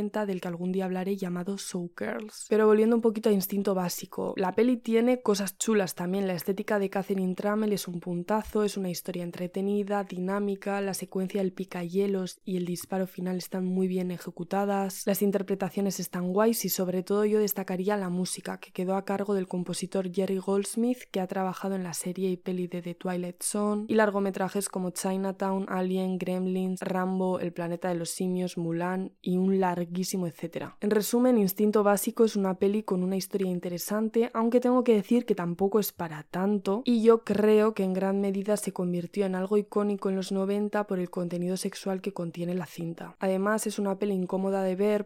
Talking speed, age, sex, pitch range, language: 190 wpm, 20-39, female, 185-205 Hz, Spanish